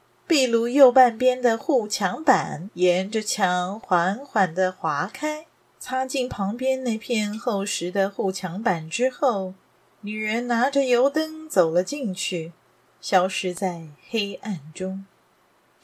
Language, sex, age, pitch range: Chinese, female, 30-49, 185-250 Hz